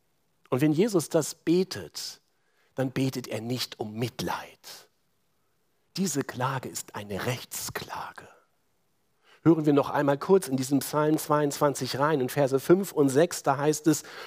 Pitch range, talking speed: 135-205 Hz, 145 wpm